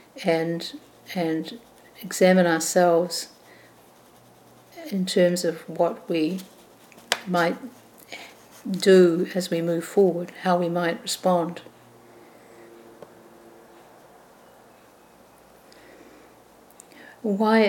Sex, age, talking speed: female, 60-79, 70 wpm